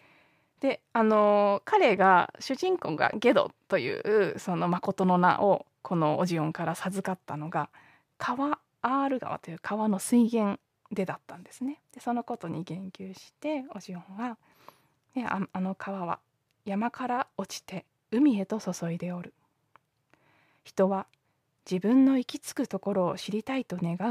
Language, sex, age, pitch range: Japanese, female, 20-39, 170-235 Hz